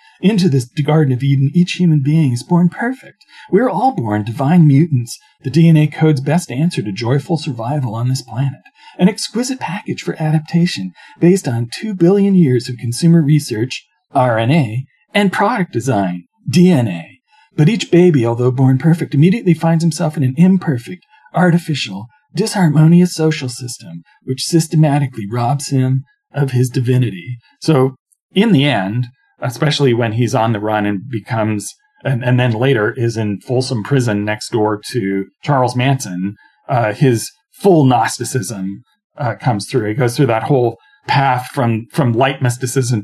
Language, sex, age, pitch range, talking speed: English, male, 40-59, 115-160 Hz, 155 wpm